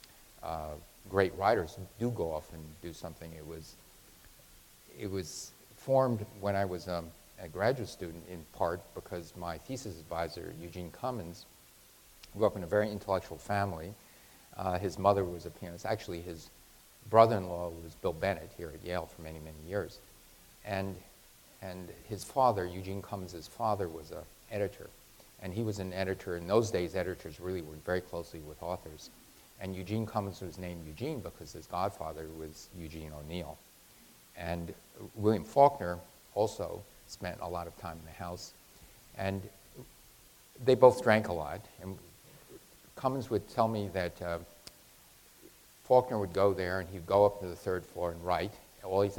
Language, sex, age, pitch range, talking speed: English, male, 40-59, 85-100 Hz, 160 wpm